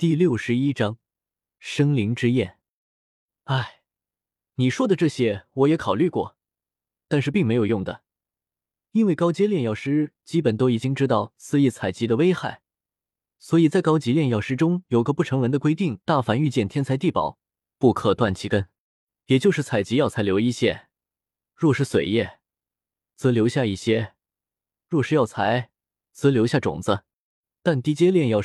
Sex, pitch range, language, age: male, 110-150 Hz, Chinese, 20-39